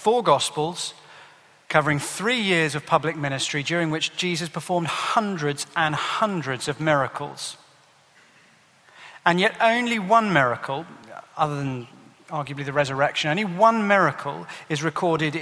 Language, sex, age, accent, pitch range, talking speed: English, male, 40-59, British, 145-180 Hz, 125 wpm